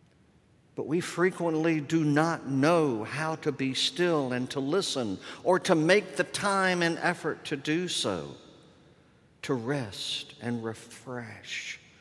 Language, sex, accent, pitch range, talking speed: English, male, American, 135-185 Hz, 135 wpm